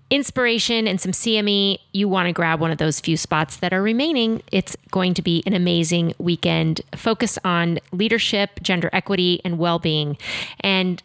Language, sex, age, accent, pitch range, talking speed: English, female, 30-49, American, 175-215 Hz, 170 wpm